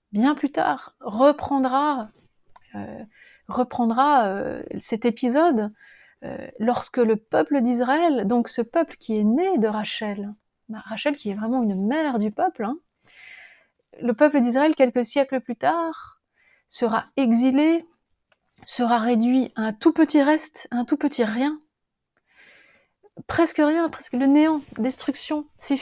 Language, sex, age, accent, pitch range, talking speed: French, female, 30-49, French, 225-275 Hz, 140 wpm